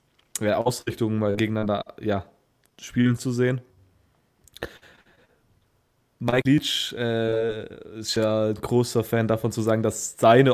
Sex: male